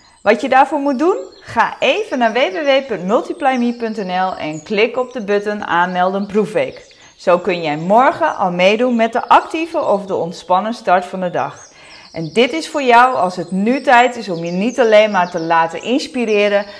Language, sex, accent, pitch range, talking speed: Dutch, female, Dutch, 180-265 Hz, 180 wpm